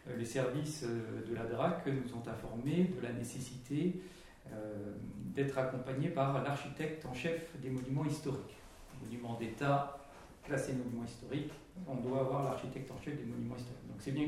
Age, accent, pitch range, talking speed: 50-69, French, 115-140 Hz, 160 wpm